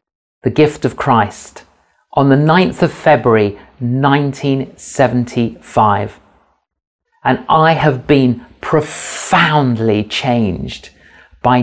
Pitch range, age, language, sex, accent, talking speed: 115-160 Hz, 40-59, English, male, British, 90 wpm